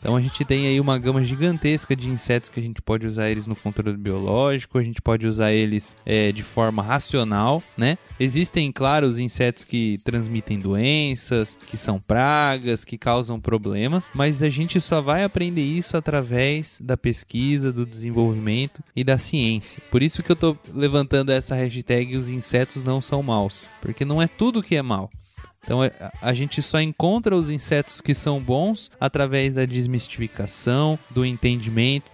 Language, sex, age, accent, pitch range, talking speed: Portuguese, male, 20-39, Brazilian, 115-145 Hz, 170 wpm